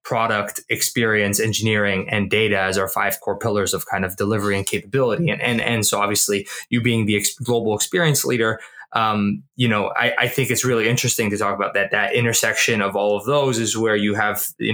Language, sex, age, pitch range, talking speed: English, male, 20-39, 110-135 Hz, 210 wpm